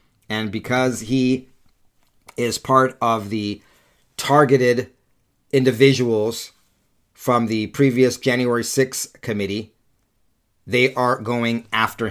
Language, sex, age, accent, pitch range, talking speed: English, male, 40-59, American, 120-150 Hz, 95 wpm